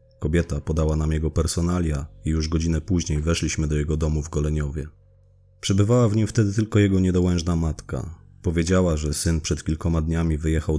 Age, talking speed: 30-49, 165 wpm